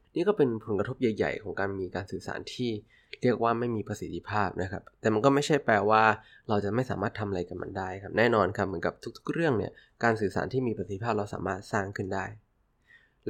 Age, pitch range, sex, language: 20-39, 95-120 Hz, male, Thai